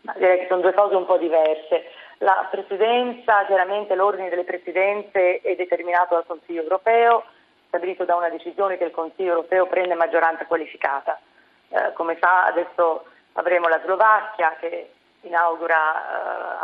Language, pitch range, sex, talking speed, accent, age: Italian, 170-210 Hz, female, 145 wpm, native, 30-49